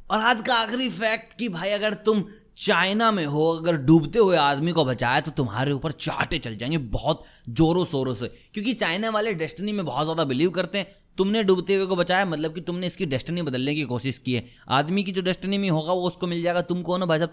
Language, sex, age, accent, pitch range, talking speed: Hindi, male, 20-39, native, 125-190 Hz, 235 wpm